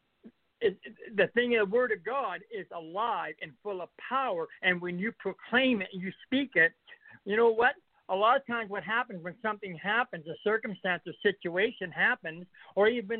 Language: English